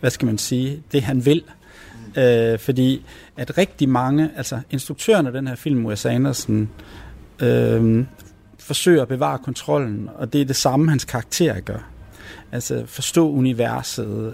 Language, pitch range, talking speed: Danish, 110-140 Hz, 150 wpm